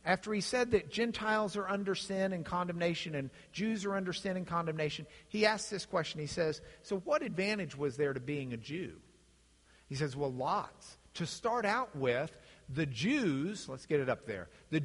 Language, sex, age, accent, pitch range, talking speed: English, male, 50-69, American, 160-265 Hz, 195 wpm